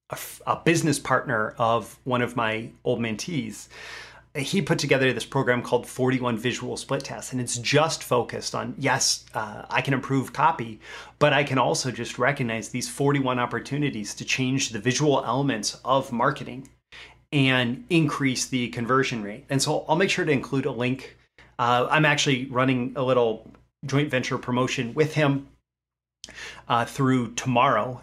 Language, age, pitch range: English, 30-49, 120-140 Hz